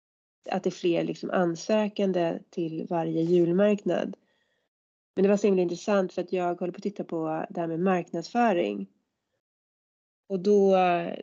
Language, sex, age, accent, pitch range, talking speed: Swedish, female, 30-49, native, 165-195 Hz, 150 wpm